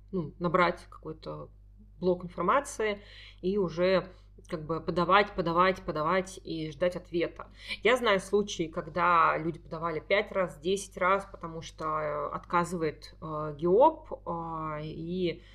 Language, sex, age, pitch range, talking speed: Russian, female, 30-49, 170-195 Hz, 125 wpm